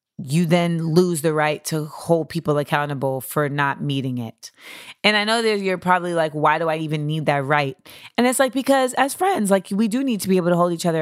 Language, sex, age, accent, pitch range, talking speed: English, female, 20-39, American, 160-205 Hz, 240 wpm